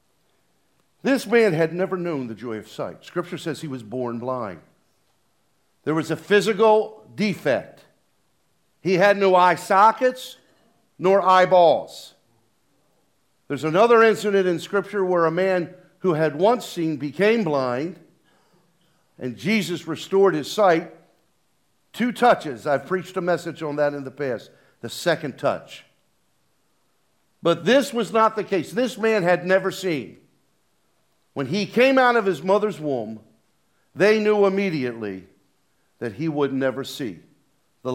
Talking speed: 140 wpm